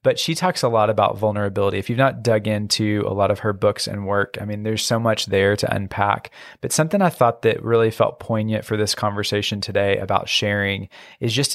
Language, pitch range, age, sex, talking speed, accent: English, 105-125 Hz, 20-39, male, 225 wpm, American